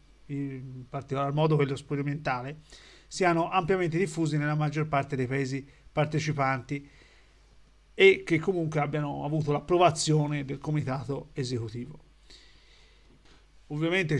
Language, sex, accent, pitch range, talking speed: Italian, male, native, 135-160 Hz, 100 wpm